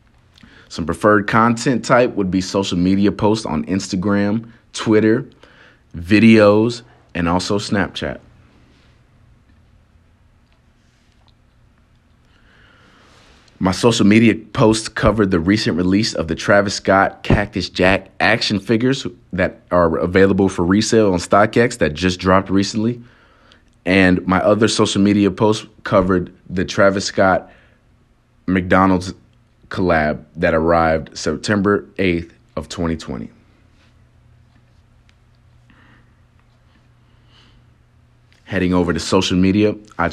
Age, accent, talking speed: 30-49, American, 100 wpm